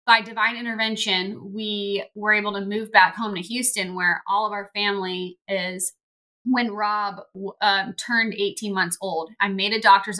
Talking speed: 170 wpm